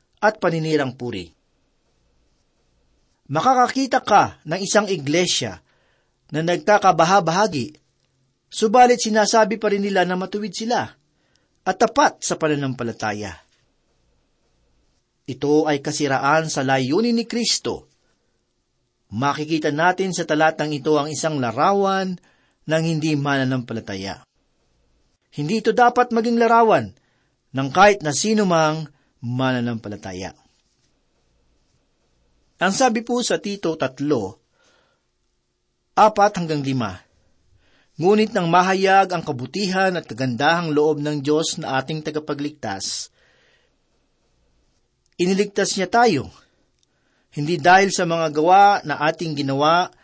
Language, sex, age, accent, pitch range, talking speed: Filipino, male, 40-59, native, 130-195 Hz, 100 wpm